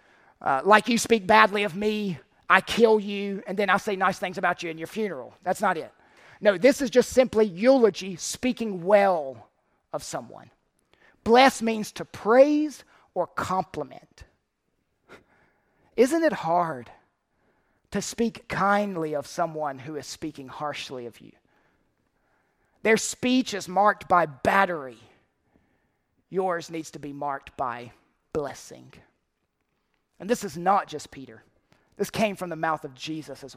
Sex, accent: male, American